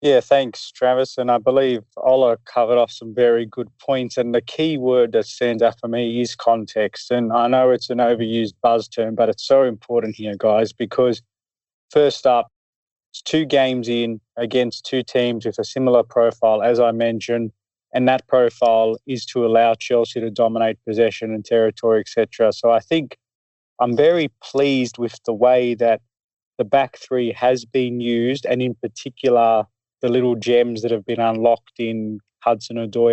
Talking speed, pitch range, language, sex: 175 wpm, 115-125 Hz, English, male